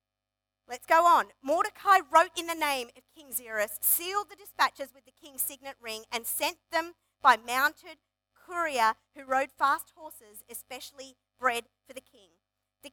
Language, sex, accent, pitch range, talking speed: English, female, Australian, 260-370 Hz, 160 wpm